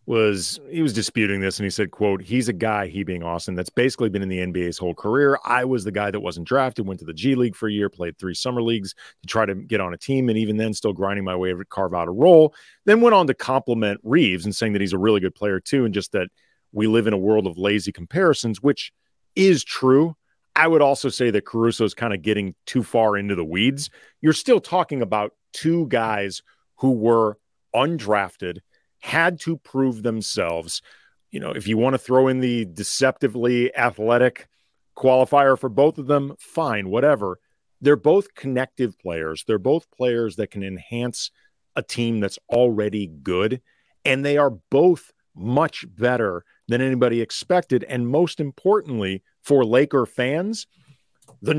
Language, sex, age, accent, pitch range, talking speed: English, male, 40-59, American, 100-135 Hz, 195 wpm